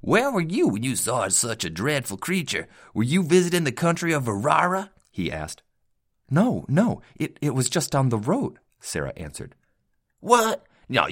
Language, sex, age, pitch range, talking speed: English, male, 30-49, 100-155 Hz, 175 wpm